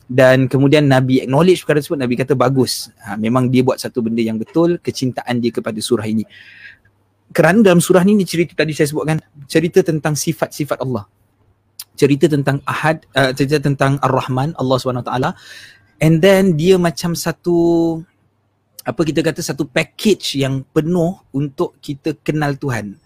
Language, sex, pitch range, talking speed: Malay, male, 130-170 Hz, 155 wpm